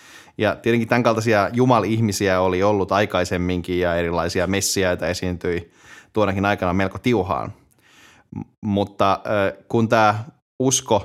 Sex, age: male, 20-39